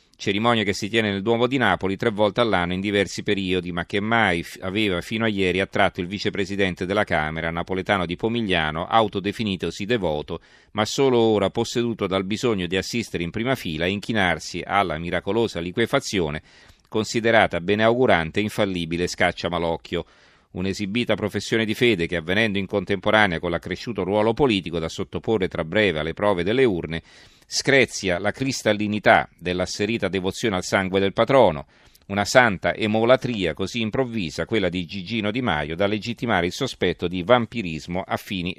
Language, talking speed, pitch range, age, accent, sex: Italian, 155 wpm, 90-115 Hz, 40-59, native, male